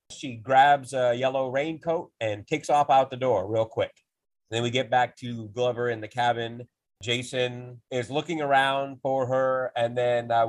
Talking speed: 175 wpm